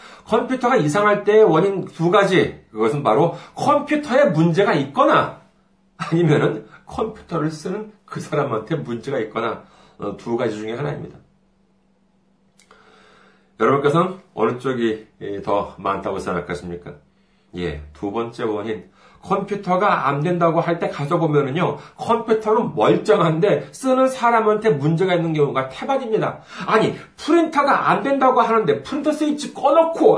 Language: Korean